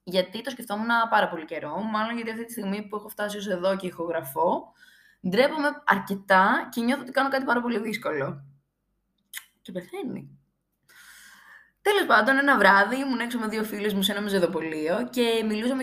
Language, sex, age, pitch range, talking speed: Greek, female, 20-39, 180-245 Hz, 165 wpm